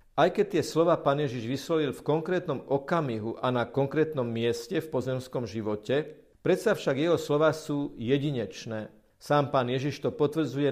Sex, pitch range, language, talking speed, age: male, 125-155 Hz, Slovak, 155 wpm, 50-69